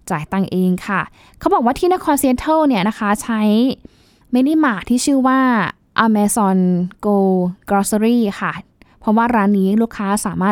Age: 10-29